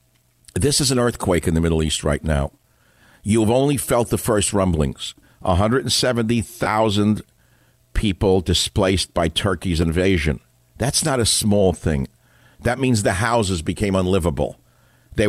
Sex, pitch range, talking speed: male, 90-130 Hz, 135 wpm